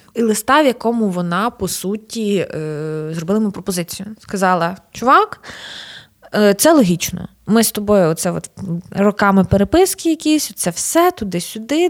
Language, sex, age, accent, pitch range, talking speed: Ukrainian, female, 20-39, native, 185-260 Hz, 120 wpm